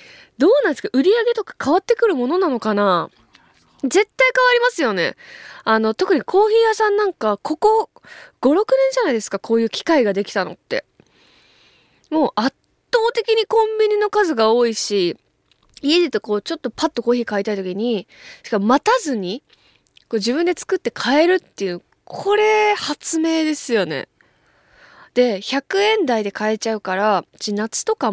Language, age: Japanese, 20-39